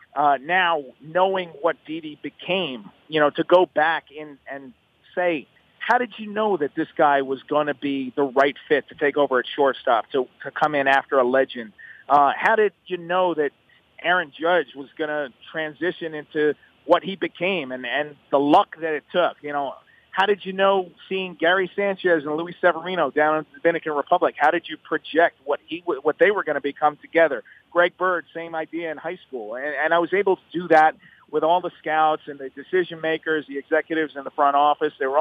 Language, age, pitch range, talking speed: English, 40-59, 150-180 Hz, 210 wpm